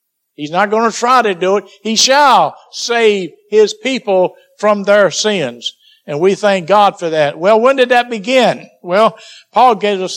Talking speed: 185 wpm